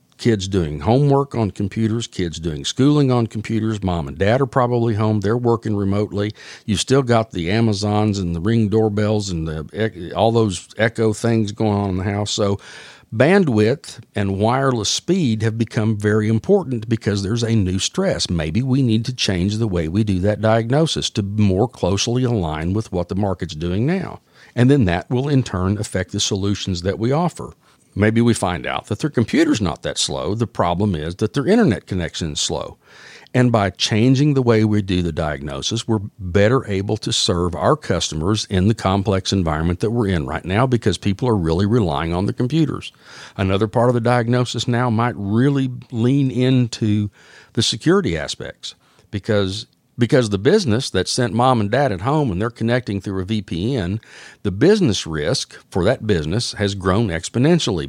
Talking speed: 180 wpm